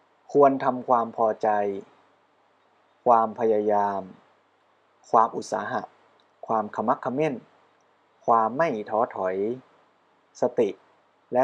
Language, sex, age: Thai, male, 20-39